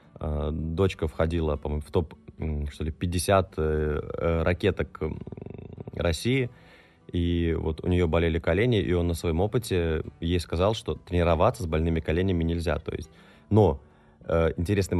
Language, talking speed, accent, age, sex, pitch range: Russian, 130 wpm, native, 20-39, male, 85-105 Hz